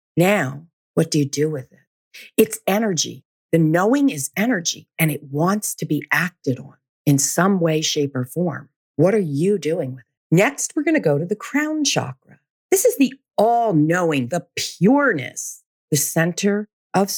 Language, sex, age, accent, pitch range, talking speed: English, female, 50-69, American, 145-220 Hz, 175 wpm